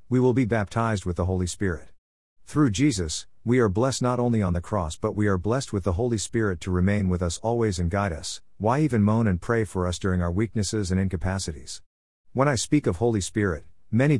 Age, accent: 50-69, American